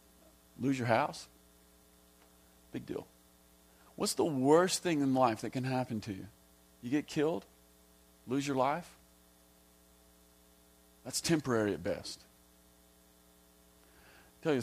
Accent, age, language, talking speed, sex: American, 40-59, English, 120 wpm, male